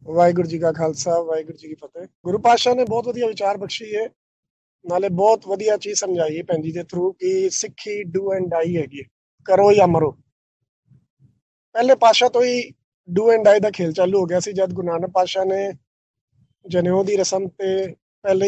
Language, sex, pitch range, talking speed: Punjabi, male, 175-215 Hz, 170 wpm